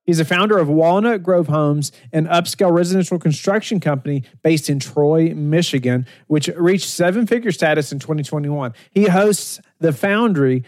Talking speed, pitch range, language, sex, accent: 145 wpm, 135-170 Hz, English, male, American